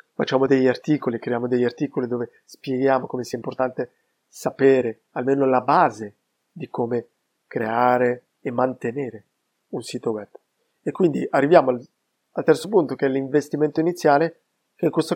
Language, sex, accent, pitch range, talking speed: Italian, male, native, 130-150 Hz, 145 wpm